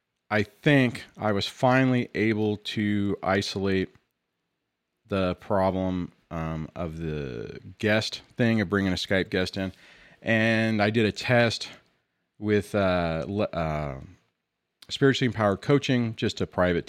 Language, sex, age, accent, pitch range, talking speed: English, male, 40-59, American, 90-120 Hz, 125 wpm